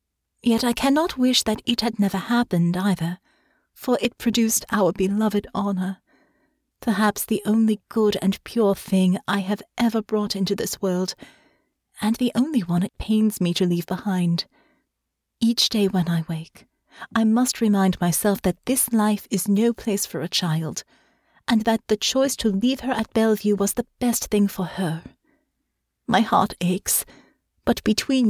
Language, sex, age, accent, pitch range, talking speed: English, female, 30-49, British, 195-245 Hz, 165 wpm